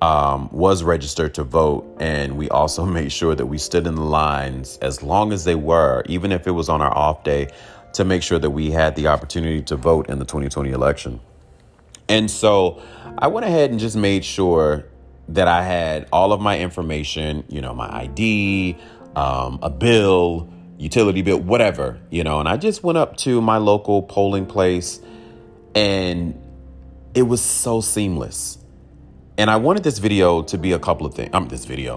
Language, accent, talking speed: English, American, 190 wpm